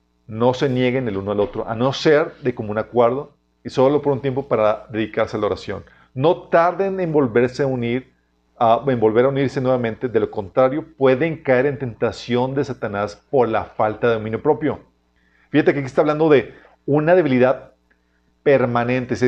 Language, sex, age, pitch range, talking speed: Spanish, male, 40-59, 105-140 Hz, 180 wpm